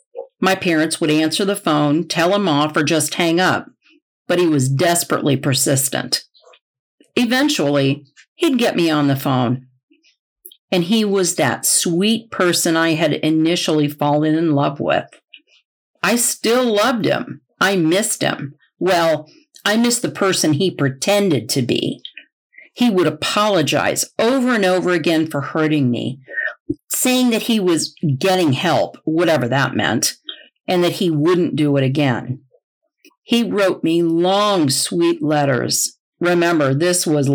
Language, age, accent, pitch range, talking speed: English, 50-69, American, 150-220 Hz, 145 wpm